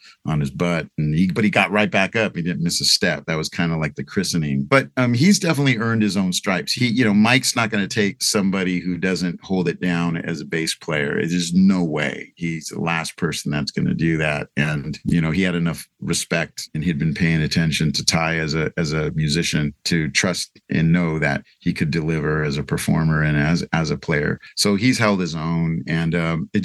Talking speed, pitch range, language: 235 wpm, 80-95 Hz, English